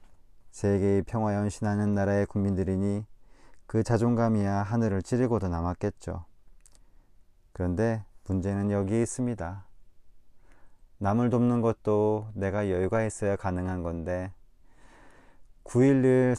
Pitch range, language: 95-115 Hz, Korean